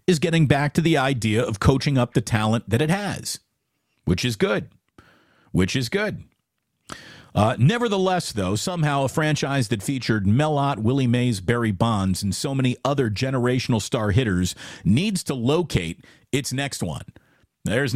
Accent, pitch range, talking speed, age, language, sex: American, 110-145 Hz, 155 wpm, 50-69, English, male